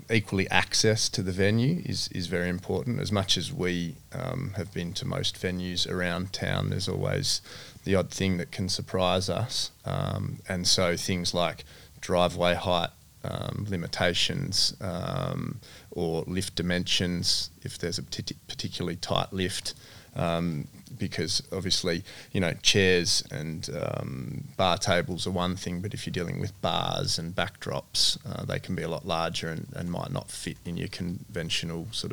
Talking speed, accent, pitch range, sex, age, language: 160 wpm, Australian, 90-110 Hz, male, 20-39, English